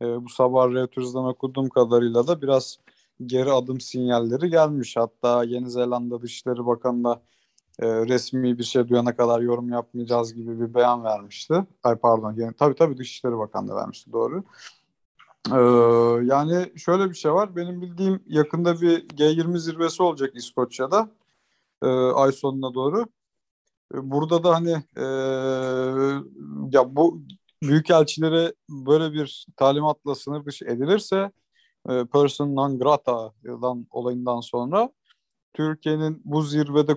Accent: native